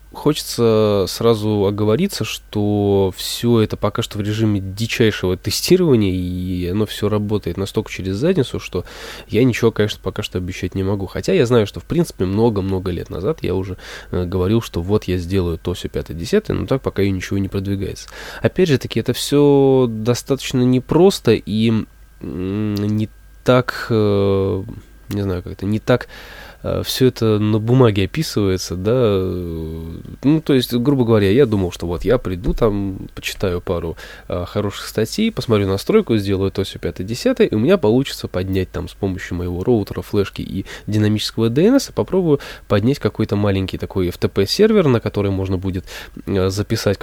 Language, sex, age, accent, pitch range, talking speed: Russian, male, 20-39, native, 95-120 Hz, 160 wpm